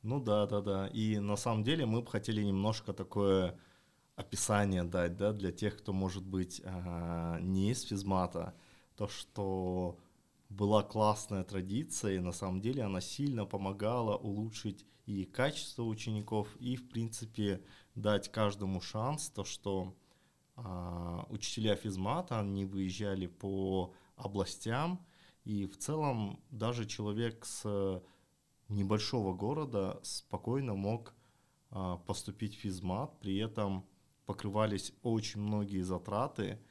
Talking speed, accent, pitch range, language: 120 wpm, native, 95-115 Hz, Russian